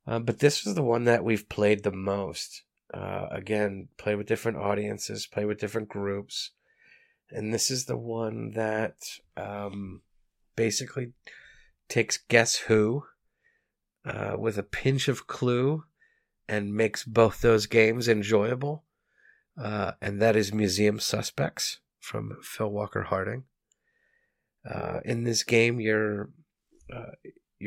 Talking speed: 130 wpm